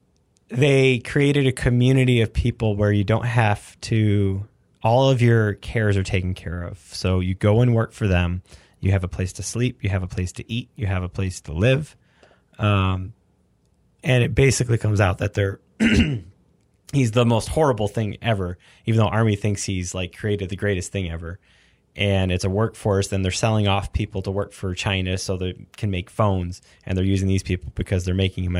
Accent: American